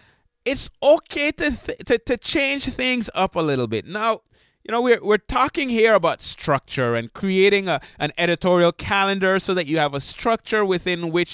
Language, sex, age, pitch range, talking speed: English, male, 20-39, 170-255 Hz, 185 wpm